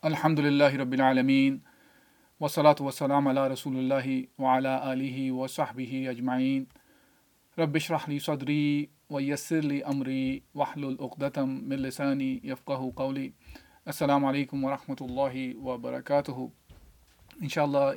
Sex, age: male, 40-59